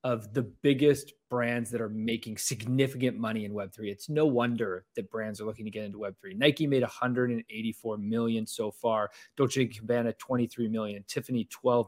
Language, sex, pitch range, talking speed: English, male, 115-145 Hz, 170 wpm